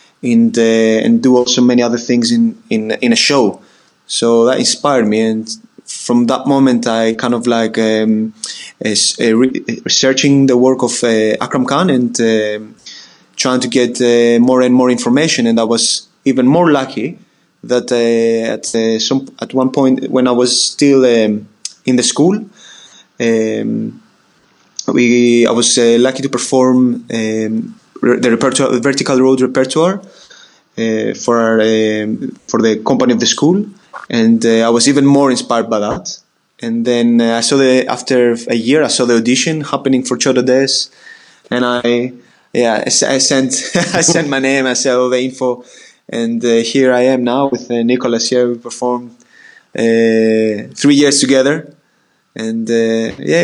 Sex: male